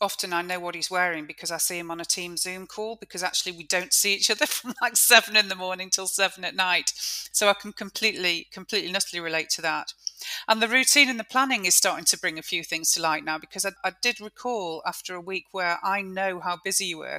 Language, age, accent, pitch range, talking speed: English, 40-59, British, 170-200 Hz, 250 wpm